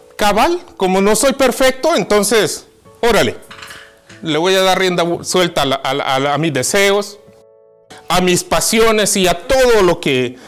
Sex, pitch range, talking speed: male, 175-225 Hz, 160 wpm